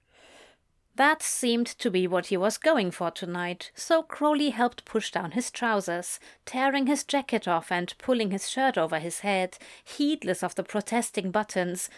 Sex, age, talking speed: female, 30-49, 165 wpm